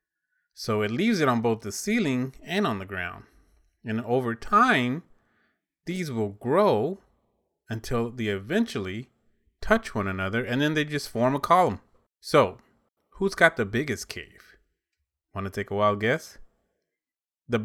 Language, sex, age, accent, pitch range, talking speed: English, male, 30-49, American, 105-150 Hz, 150 wpm